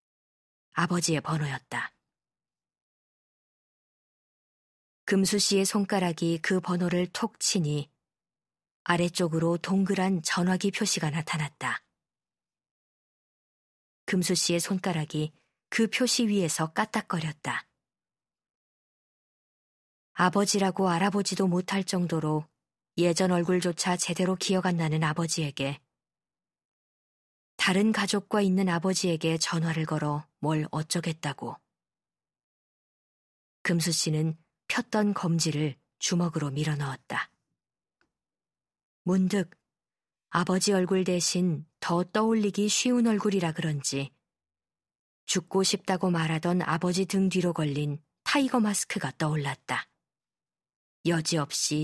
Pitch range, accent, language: 155-190 Hz, native, Korean